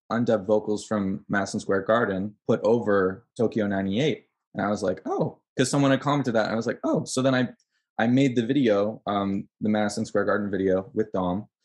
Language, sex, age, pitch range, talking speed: English, male, 20-39, 100-120 Hz, 205 wpm